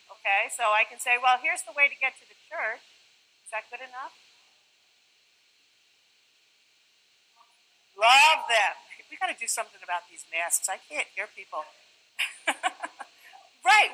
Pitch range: 235-320 Hz